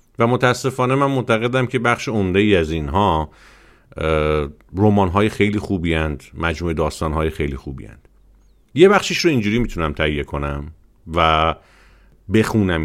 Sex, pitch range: male, 80-115 Hz